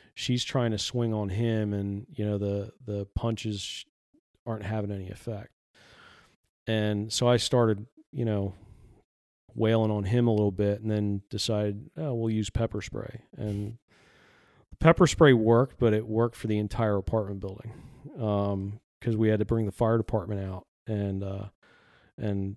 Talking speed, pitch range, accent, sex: 165 wpm, 100-115 Hz, American, male